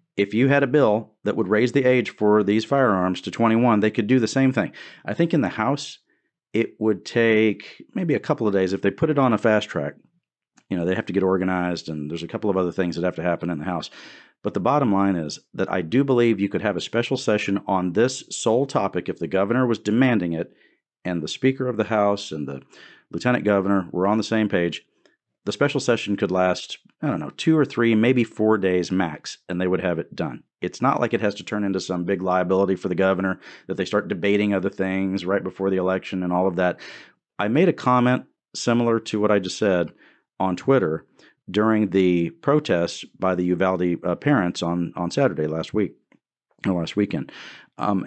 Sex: male